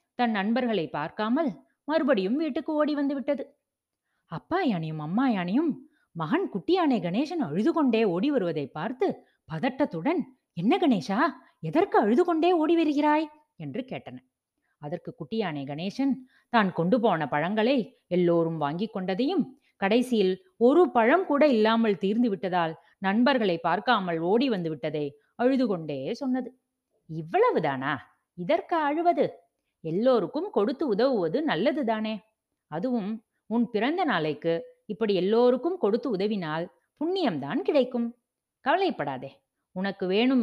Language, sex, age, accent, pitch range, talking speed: Tamil, female, 20-39, native, 175-270 Hz, 105 wpm